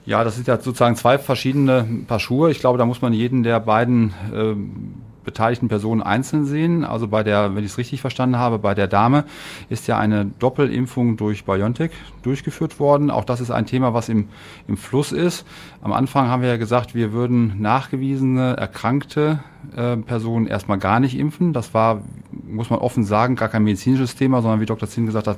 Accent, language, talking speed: German, German, 195 wpm